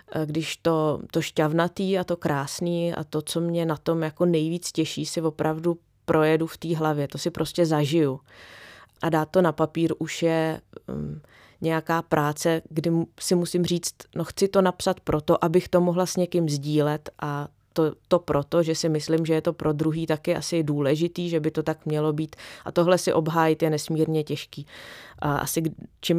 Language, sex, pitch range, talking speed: Czech, female, 145-165 Hz, 185 wpm